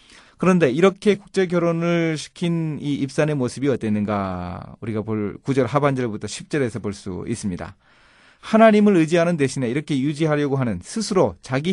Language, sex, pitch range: Korean, male, 115-170 Hz